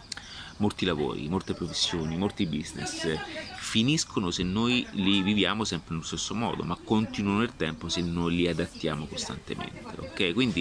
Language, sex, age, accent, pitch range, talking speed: Italian, male, 30-49, native, 90-125 Hz, 155 wpm